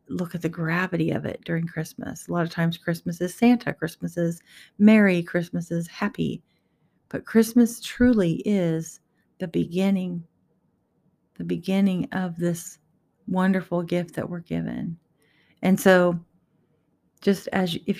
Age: 40-59